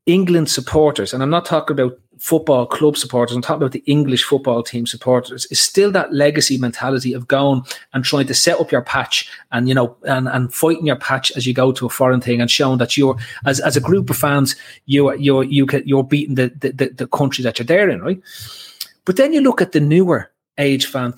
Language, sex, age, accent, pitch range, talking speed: English, male, 30-49, Irish, 130-150 Hz, 225 wpm